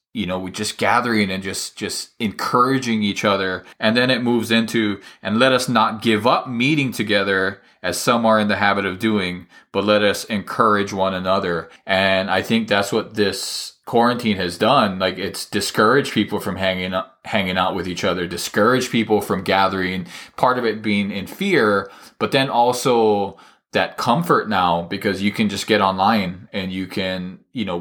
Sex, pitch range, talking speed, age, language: male, 95-115 Hz, 185 wpm, 20-39, English